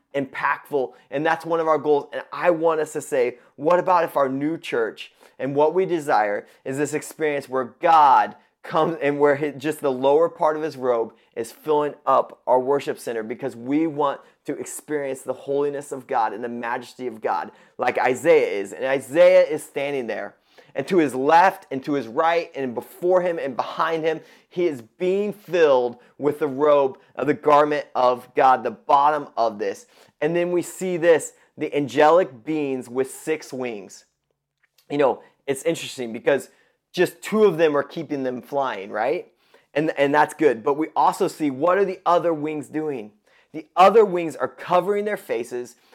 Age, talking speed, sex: 30-49, 185 wpm, male